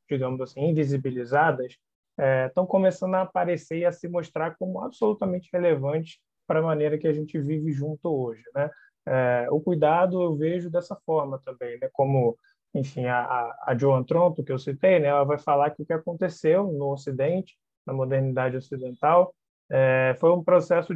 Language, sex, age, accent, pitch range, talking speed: Portuguese, male, 20-39, Brazilian, 140-180 Hz, 175 wpm